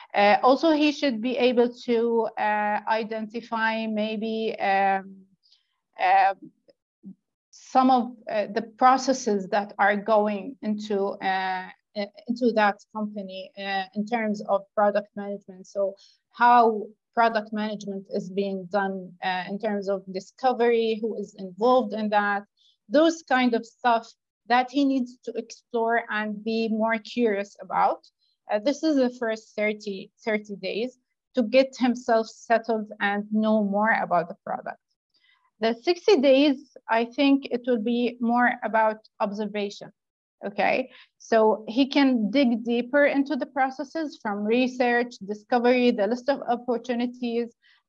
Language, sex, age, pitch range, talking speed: English, female, 30-49, 210-250 Hz, 135 wpm